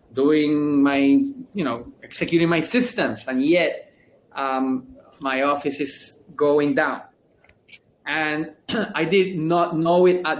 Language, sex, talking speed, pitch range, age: English, male, 125 wpm, 140-175 Hz, 20-39